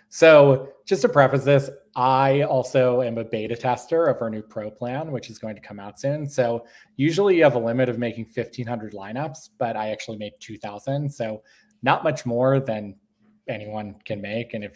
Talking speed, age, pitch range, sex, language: 195 wpm, 20-39, 115-155 Hz, male, English